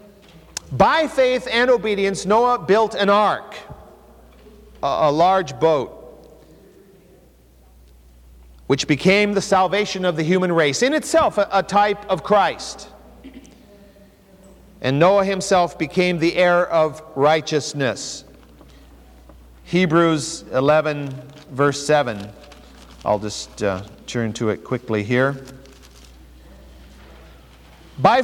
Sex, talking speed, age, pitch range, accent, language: male, 100 wpm, 50-69, 150-215 Hz, American, English